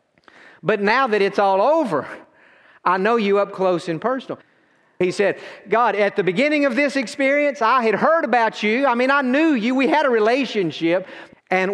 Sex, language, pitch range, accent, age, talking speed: male, English, 175-235 Hz, American, 50-69, 190 wpm